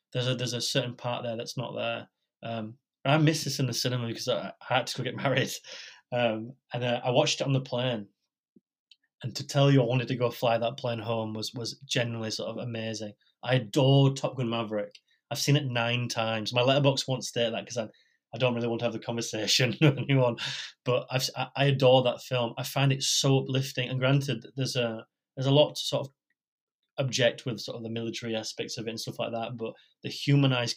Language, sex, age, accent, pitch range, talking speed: English, male, 20-39, British, 115-135 Hz, 230 wpm